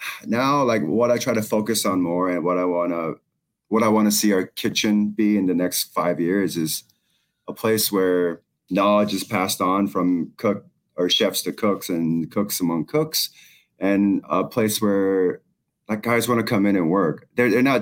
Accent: American